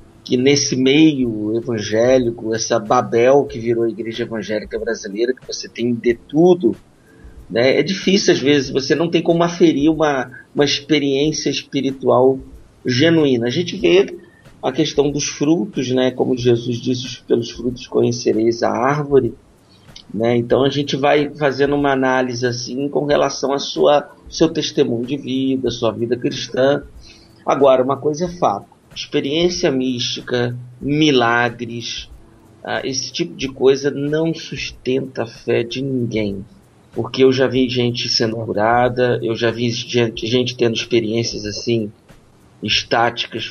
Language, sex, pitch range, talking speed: Portuguese, male, 115-145 Hz, 135 wpm